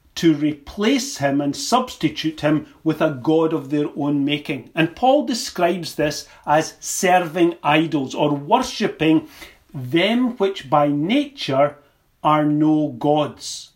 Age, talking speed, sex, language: 40-59, 125 wpm, male, English